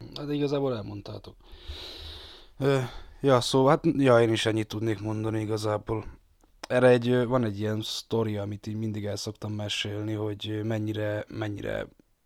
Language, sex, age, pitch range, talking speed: Hungarian, male, 20-39, 105-110 Hz, 130 wpm